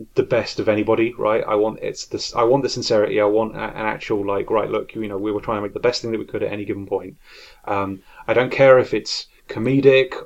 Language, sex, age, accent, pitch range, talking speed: English, male, 30-49, British, 100-170 Hz, 255 wpm